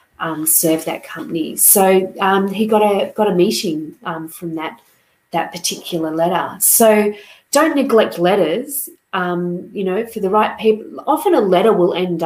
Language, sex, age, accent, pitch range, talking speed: English, female, 30-49, Australian, 170-220 Hz, 165 wpm